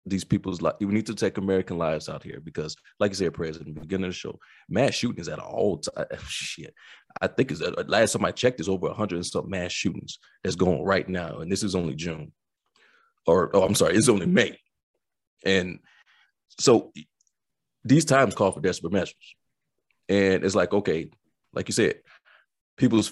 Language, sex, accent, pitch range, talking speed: English, male, American, 95-125 Hz, 190 wpm